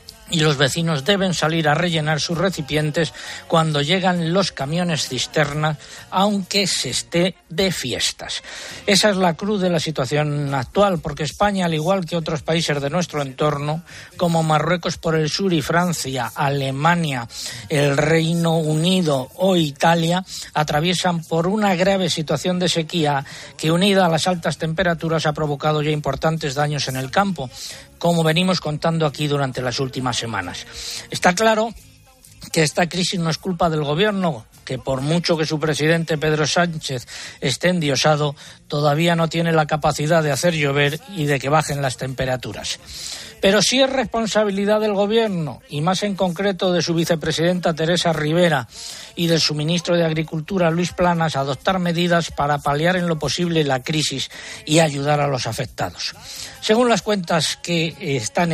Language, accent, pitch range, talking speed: Spanish, Spanish, 145-175 Hz, 160 wpm